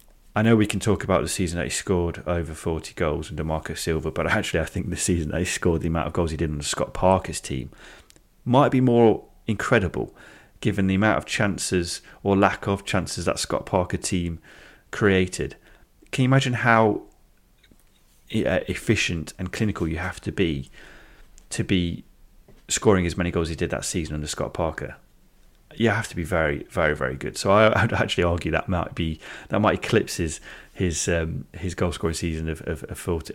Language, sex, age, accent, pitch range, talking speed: English, male, 30-49, British, 80-100 Hz, 195 wpm